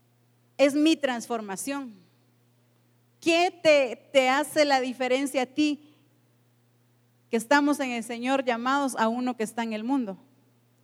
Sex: female